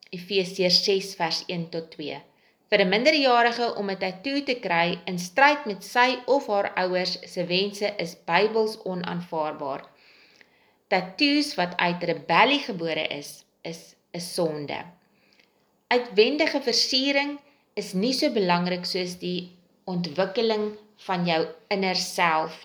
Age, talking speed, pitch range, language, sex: 30-49, 130 wpm, 175-240 Hz, English, female